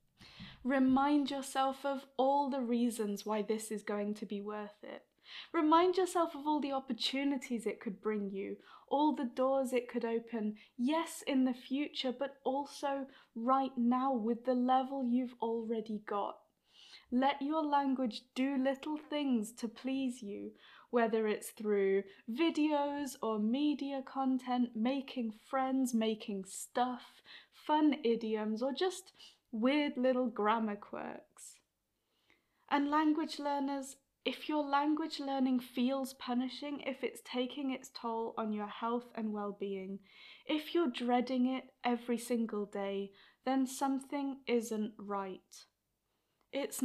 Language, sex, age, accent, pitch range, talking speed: English, female, 10-29, British, 220-275 Hz, 130 wpm